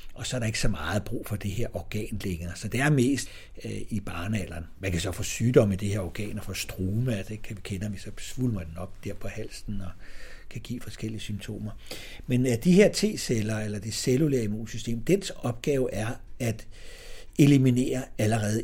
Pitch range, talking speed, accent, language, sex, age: 100-125 Hz, 205 wpm, native, Danish, male, 60-79